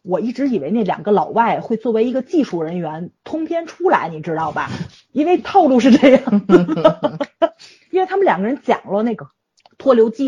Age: 30-49